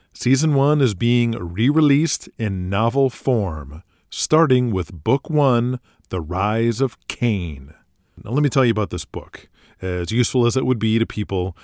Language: English